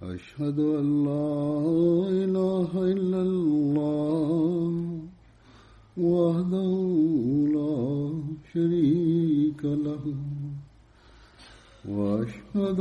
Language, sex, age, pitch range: Bulgarian, male, 60-79, 140-185 Hz